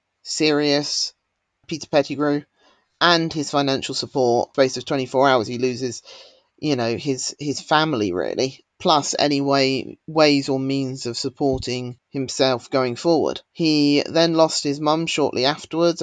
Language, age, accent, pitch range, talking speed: English, 40-59, British, 135-160 Hz, 140 wpm